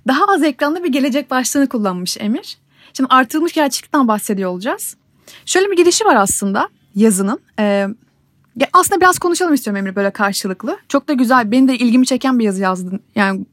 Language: Turkish